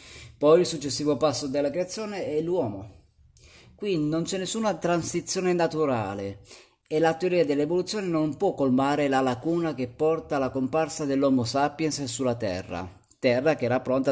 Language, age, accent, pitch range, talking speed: Italian, 30-49, native, 120-170 Hz, 150 wpm